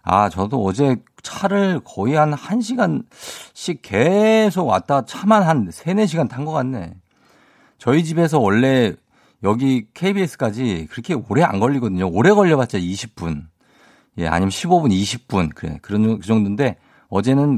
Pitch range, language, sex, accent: 100-150 Hz, Korean, male, native